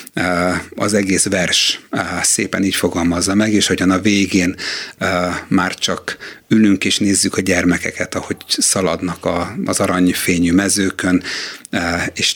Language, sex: Hungarian, male